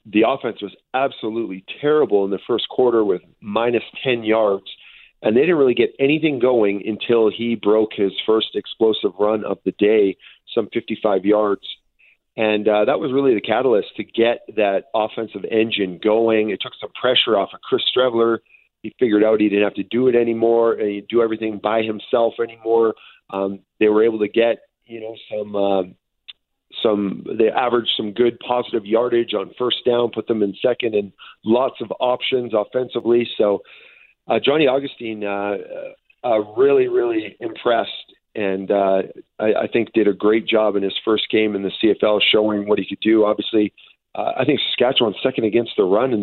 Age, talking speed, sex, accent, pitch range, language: 40-59, 180 wpm, male, American, 105-120 Hz, English